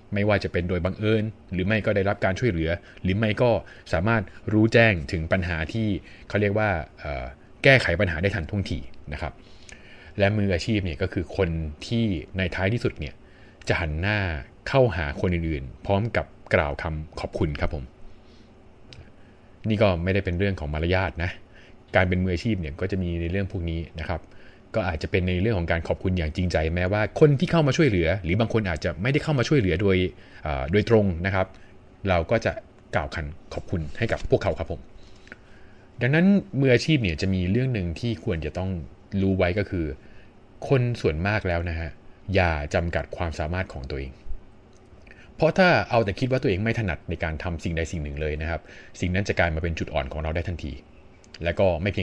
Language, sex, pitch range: Thai, male, 85-105 Hz